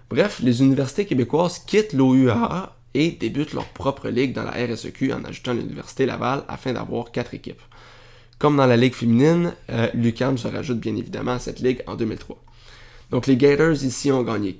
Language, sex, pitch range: French, male, 120-135 Hz